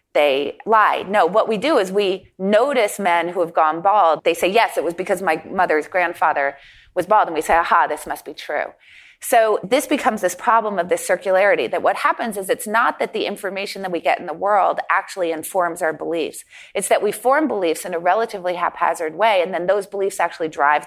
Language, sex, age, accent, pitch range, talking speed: English, female, 30-49, American, 165-225 Hz, 220 wpm